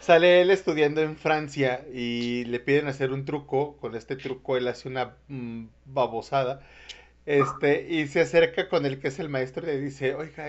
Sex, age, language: male, 30-49, Spanish